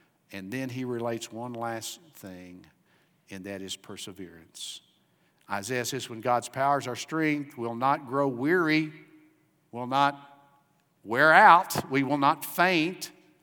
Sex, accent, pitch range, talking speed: male, American, 130-170 Hz, 135 wpm